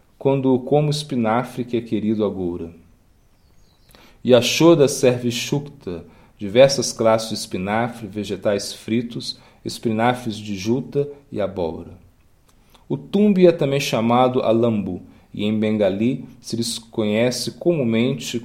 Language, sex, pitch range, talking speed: Portuguese, male, 105-135 Hz, 110 wpm